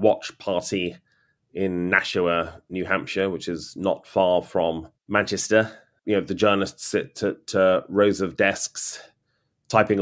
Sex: male